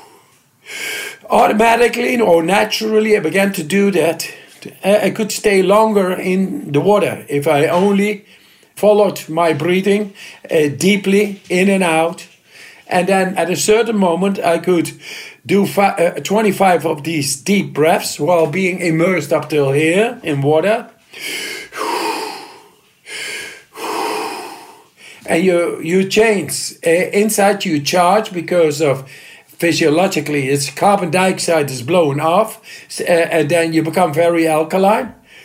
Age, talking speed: 50-69, 115 wpm